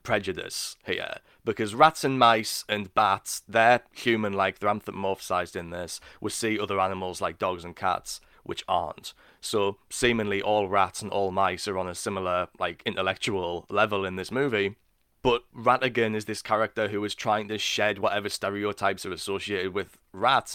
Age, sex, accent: 20-39, male, British